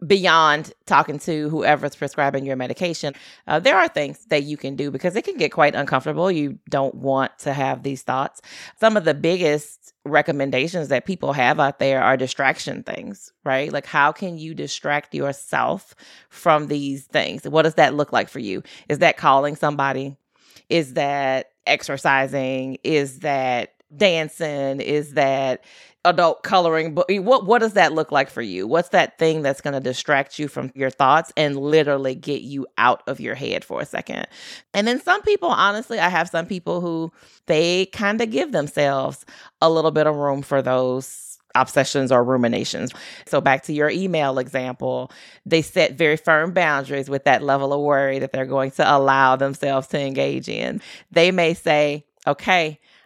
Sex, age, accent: female, 30-49, American